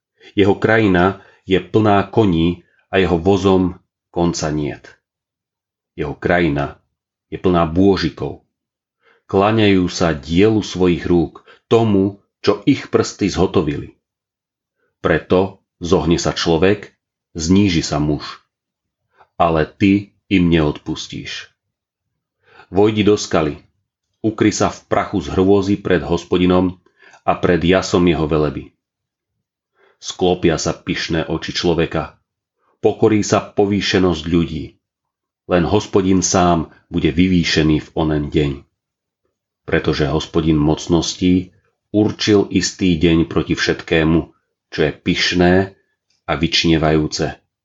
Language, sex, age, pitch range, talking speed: Slovak, male, 40-59, 80-100 Hz, 105 wpm